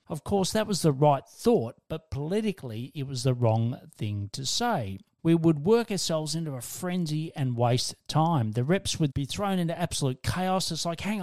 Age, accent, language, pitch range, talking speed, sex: 40-59, Australian, English, 120-165 Hz, 200 wpm, male